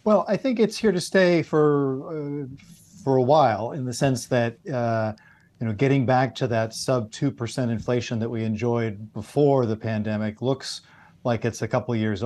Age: 40-59